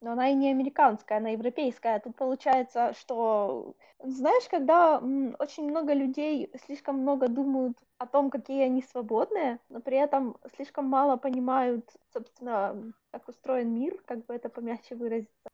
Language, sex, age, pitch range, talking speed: Ukrainian, female, 20-39, 235-280 Hz, 145 wpm